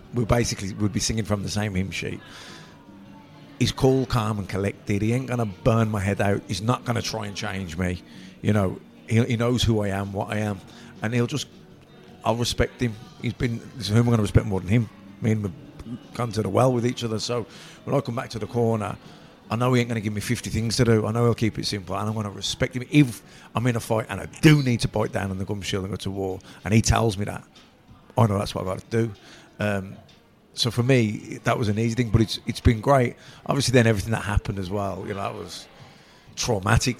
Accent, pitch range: British, 100-120 Hz